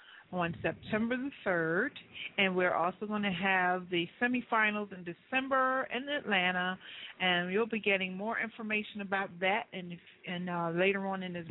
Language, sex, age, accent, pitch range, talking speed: English, female, 40-59, American, 180-220 Hz, 160 wpm